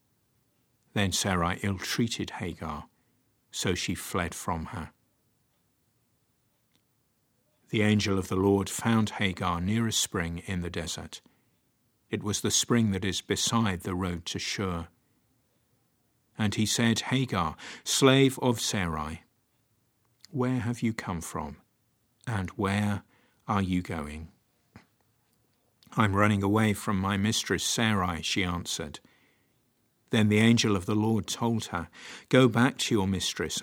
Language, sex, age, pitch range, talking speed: English, male, 50-69, 95-115 Hz, 130 wpm